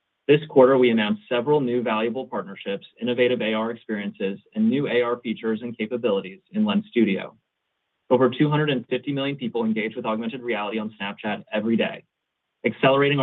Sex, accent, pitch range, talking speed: male, American, 110-140 Hz, 150 wpm